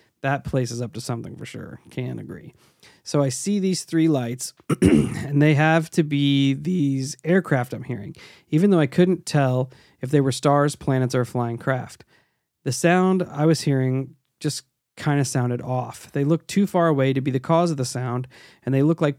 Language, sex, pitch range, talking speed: English, male, 125-155 Hz, 200 wpm